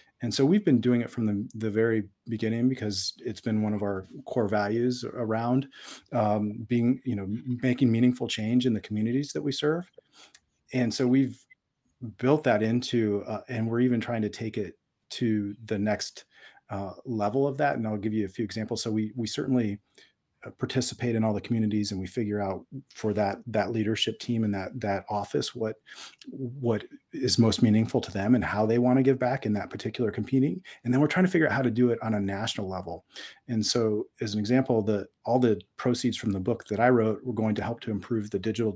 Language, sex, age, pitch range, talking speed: English, male, 40-59, 105-125 Hz, 215 wpm